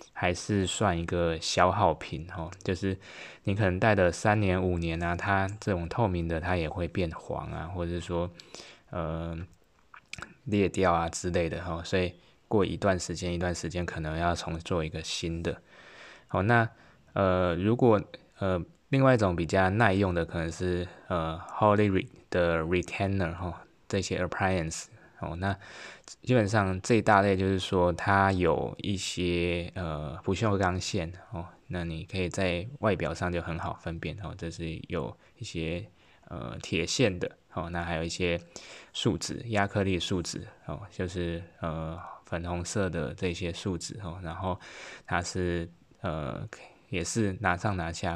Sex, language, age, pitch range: male, Chinese, 20-39, 85-95 Hz